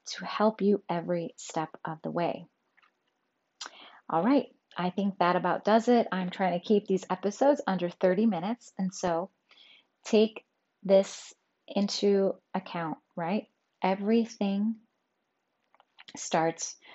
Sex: female